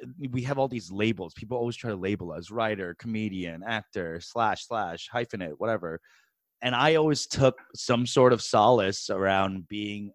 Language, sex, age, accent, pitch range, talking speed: English, male, 30-49, American, 100-125 Hz, 165 wpm